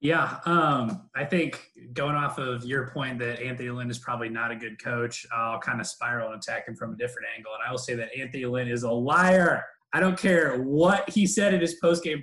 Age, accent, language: 20-39, American, English